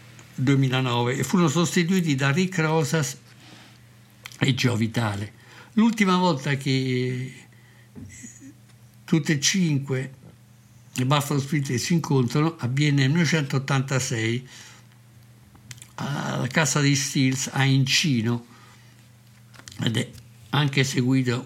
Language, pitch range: Italian, 115-140 Hz